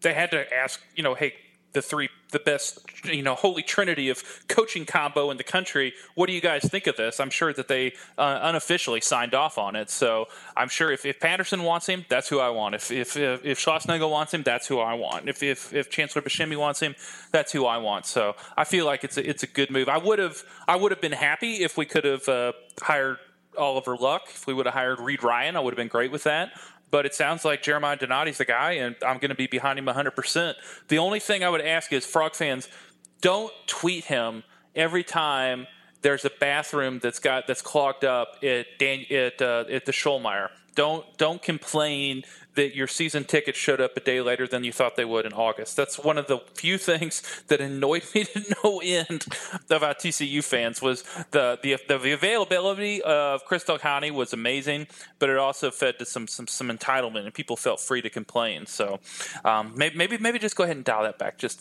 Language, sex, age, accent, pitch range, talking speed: English, male, 20-39, American, 130-165 Hz, 220 wpm